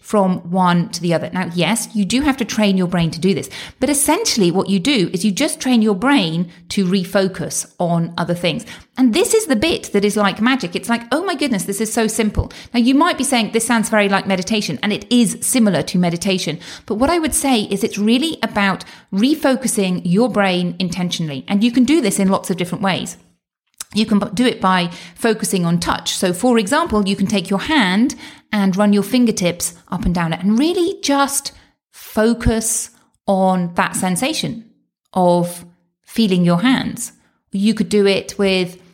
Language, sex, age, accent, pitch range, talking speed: English, female, 40-59, British, 180-235 Hz, 200 wpm